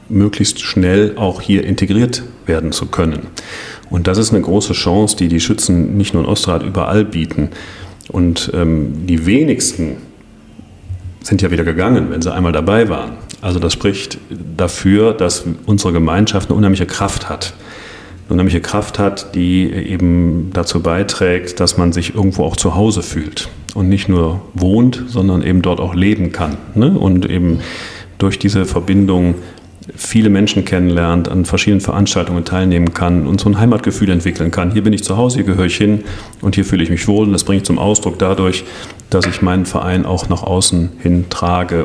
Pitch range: 85-100 Hz